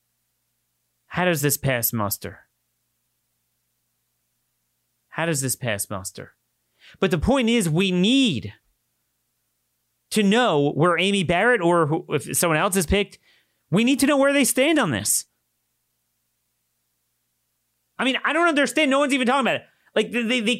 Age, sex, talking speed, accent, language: 30-49, male, 150 wpm, American, English